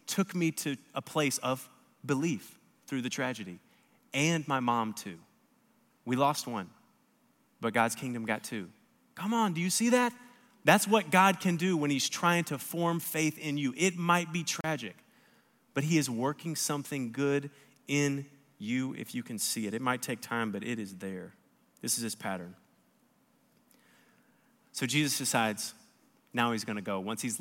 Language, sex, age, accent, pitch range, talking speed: English, male, 30-49, American, 135-185 Hz, 175 wpm